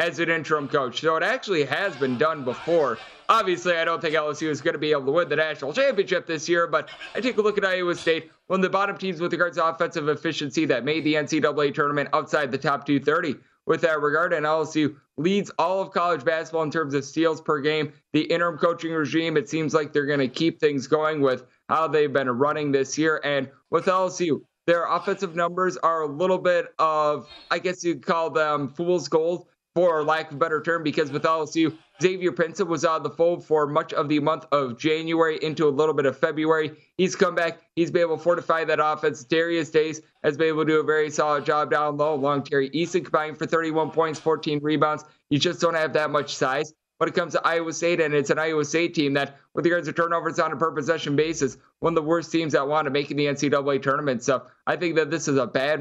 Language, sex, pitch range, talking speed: English, male, 150-170 Hz, 235 wpm